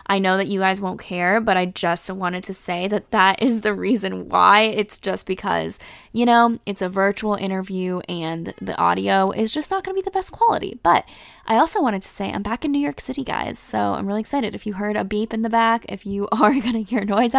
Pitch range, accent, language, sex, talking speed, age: 190-230 Hz, American, English, female, 250 wpm, 10-29